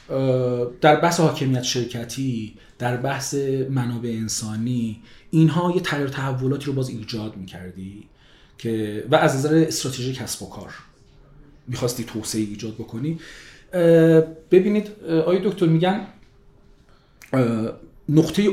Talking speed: 110 wpm